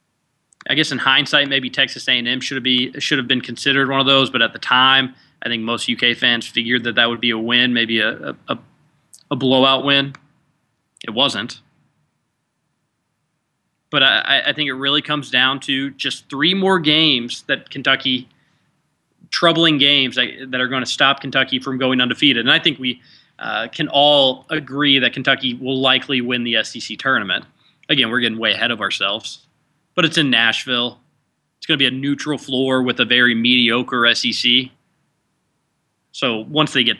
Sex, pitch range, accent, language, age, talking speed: male, 125-145 Hz, American, English, 20-39, 170 wpm